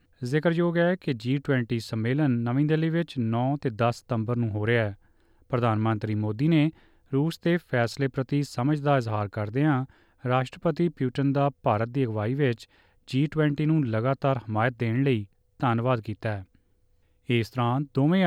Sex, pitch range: male, 115-145 Hz